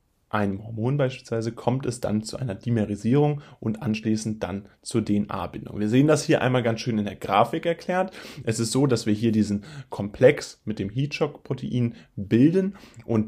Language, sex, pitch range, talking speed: German, male, 105-135 Hz, 175 wpm